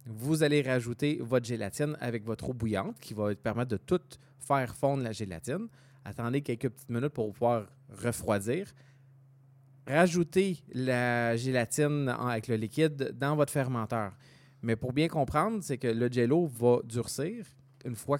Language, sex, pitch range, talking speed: French, male, 110-135 Hz, 155 wpm